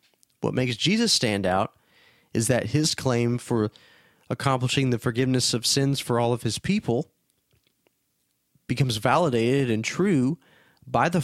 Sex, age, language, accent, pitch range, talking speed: male, 30-49, English, American, 115-140 Hz, 140 wpm